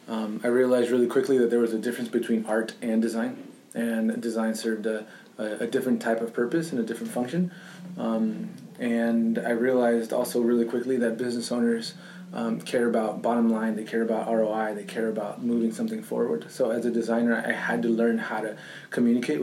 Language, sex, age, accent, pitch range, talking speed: English, male, 20-39, American, 115-135 Hz, 200 wpm